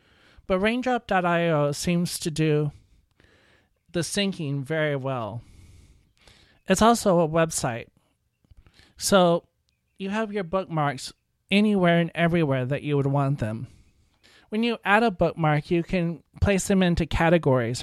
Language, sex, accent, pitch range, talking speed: English, male, American, 140-185 Hz, 125 wpm